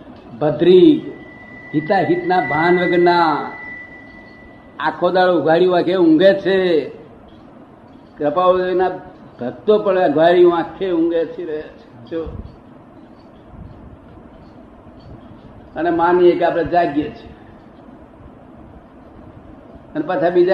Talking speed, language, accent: 50 wpm, Gujarati, native